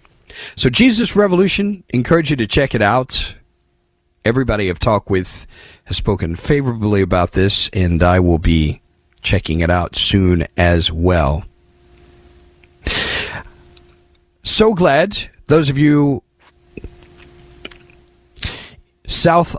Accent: American